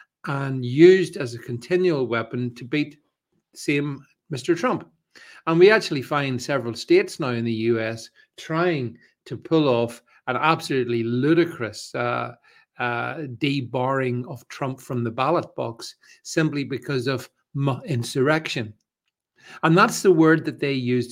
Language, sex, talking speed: English, male, 140 wpm